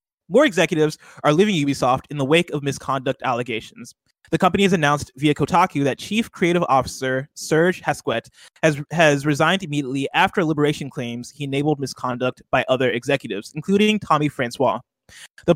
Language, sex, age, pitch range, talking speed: English, male, 20-39, 135-170 Hz, 155 wpm